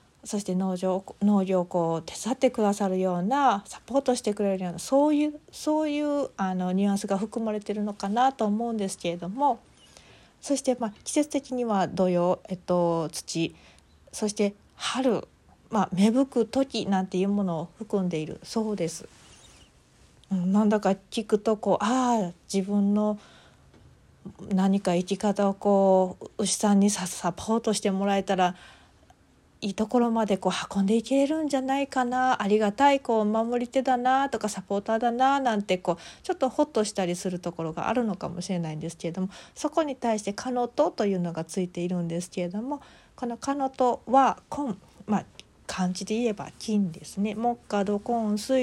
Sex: female